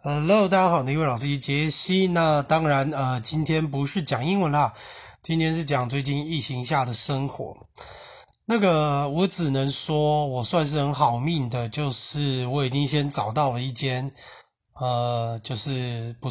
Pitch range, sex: 125-150 Hz, male